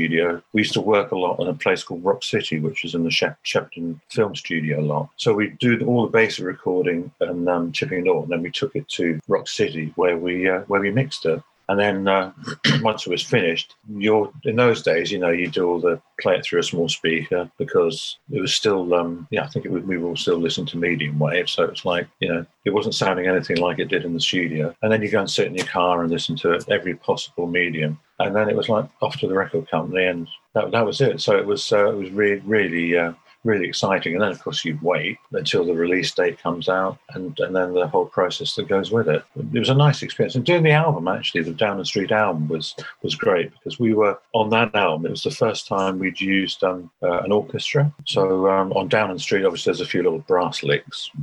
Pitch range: 85-105 Hz